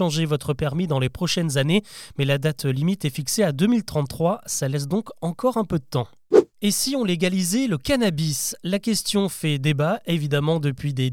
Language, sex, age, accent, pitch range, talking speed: French, male, 20-39, French, 150-210 Hz, 190 wpm